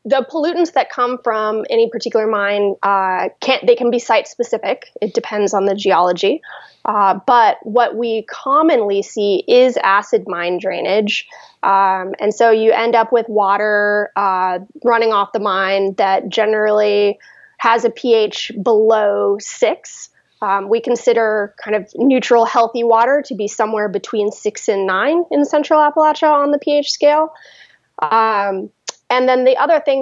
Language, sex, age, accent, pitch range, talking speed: English, female, 20-39, American, 205-255 Hz, 155 wpm